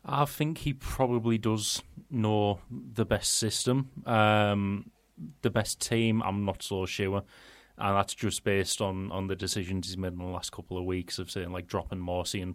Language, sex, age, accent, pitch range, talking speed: English, male, 30-49, British, 95-105 Hz, 190 wpm